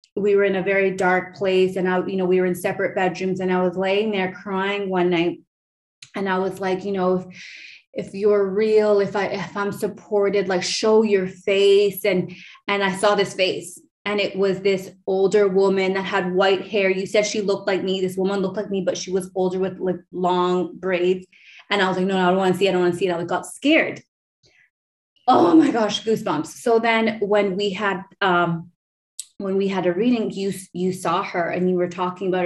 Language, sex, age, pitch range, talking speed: English, female, 20-39, 180-200 Hz, 225 wpm